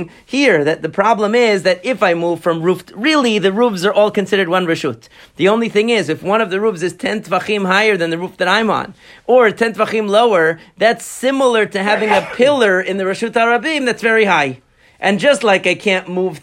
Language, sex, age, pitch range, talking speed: English, male, 40-59, 180-220 Hz, 225 wpm